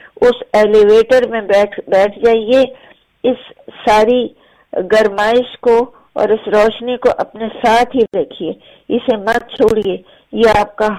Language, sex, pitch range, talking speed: English, female, 205-235 Hz, 125 wpm